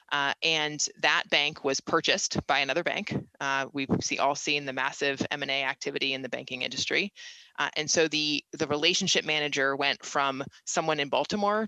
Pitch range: 140-170 Hz